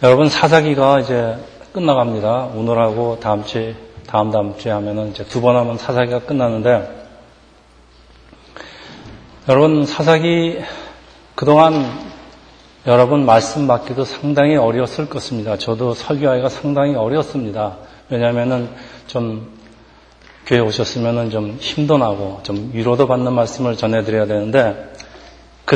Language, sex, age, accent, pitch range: Korean, male, 40-59, native, 110-140 Hz